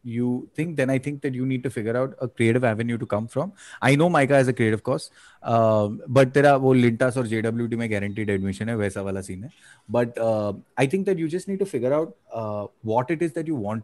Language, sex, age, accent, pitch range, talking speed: English, male, 30-49, Indian, 105-135 Hz, 245 wpm